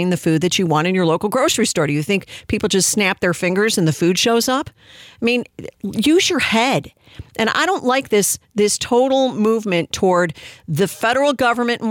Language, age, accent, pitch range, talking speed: English, 50-69, American, 155-210 Hz, 205 wpm